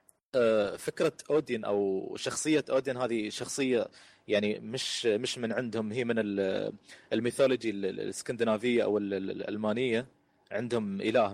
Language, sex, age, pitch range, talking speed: Arabic, male, 30-49, 110-145 Hz, 105 wpm